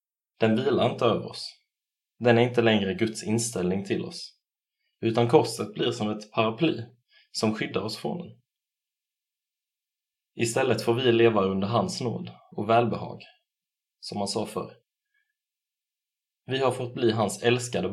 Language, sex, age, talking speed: Swedish, male, 20-39, 145 wpm